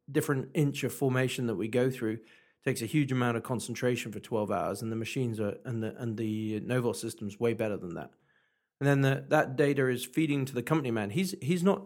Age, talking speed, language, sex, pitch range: 40-59, 235 wpm, English, male, 115-135 Hz